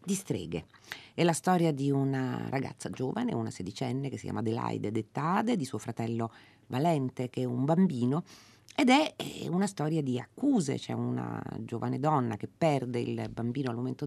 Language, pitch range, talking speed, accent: Italian, 110-145 Hz, 170 wpm, native